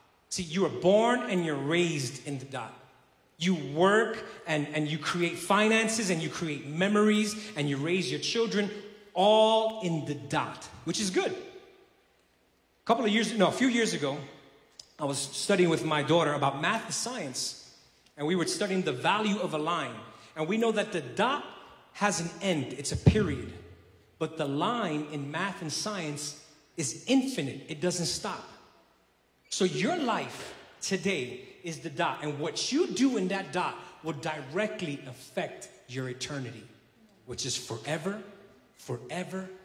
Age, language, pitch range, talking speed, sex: 30-49, English, 150-215 Hz, 165 wpm, male